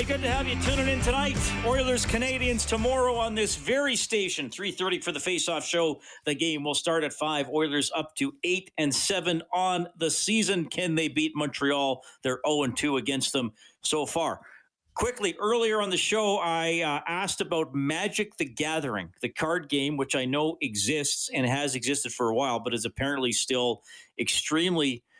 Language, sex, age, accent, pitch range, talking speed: English, male, 40-59, American, 125-175 Hz, 175 wpm